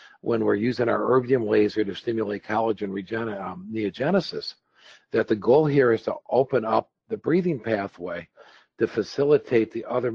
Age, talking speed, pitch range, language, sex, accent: 50-69, 160 wpm, 100-120 Hz, English, male, American